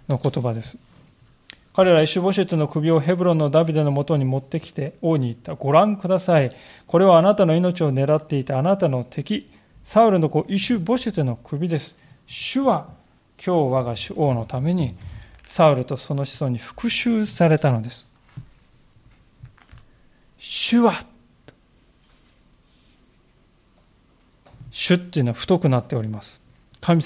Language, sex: Japanese, male